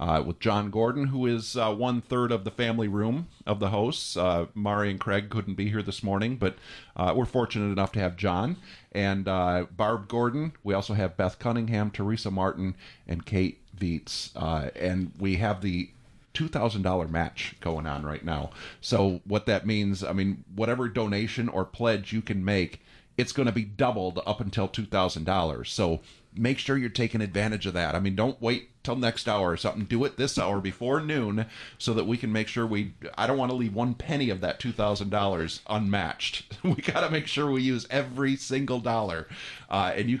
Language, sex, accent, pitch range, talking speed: English, male, American, 95-115 Hz, 195 wpm